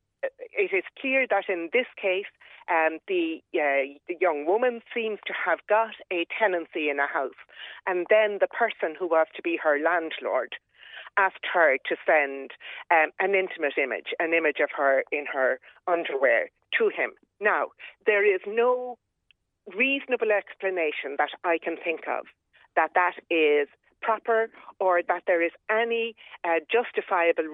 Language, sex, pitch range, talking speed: English, female, 170-260 Hz, 155 wpm